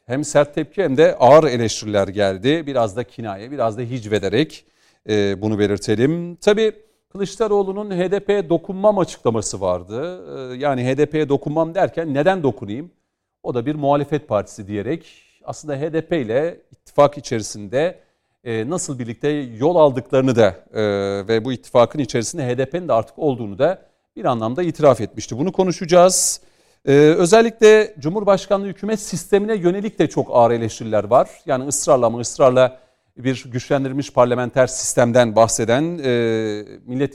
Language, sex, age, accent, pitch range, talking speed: Turkish, male, 40-59, native, 115-170 Hz, 130 wpm